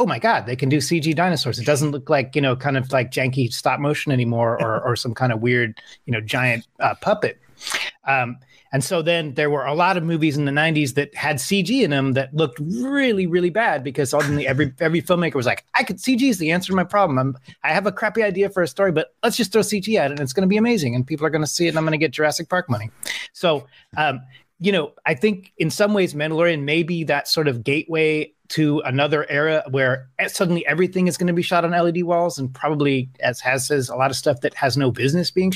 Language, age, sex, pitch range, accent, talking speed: English, 30-49, male, 130-170 Hz, American, 255 wpm